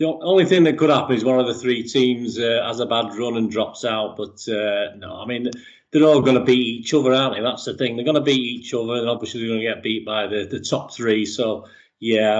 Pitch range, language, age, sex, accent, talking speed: 115-155 Hz, English, 40-59, male, British, 275 wpm